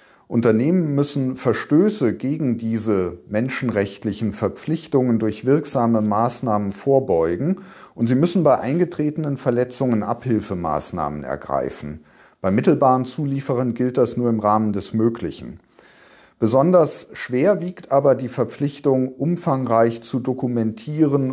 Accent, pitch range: German, 110-135 Hz